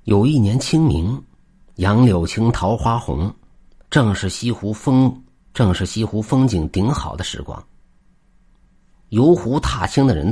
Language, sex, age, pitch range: Chinese, male, 50-69, 90-135 Hz